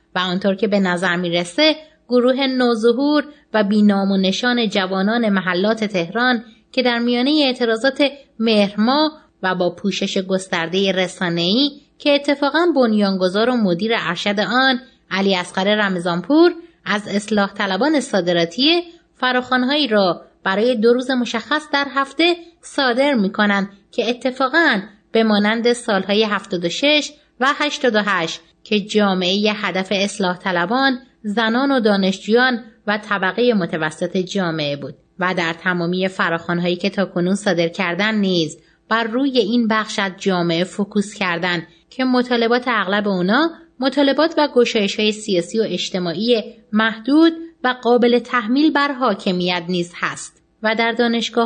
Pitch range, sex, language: 190-250 Hz, female, English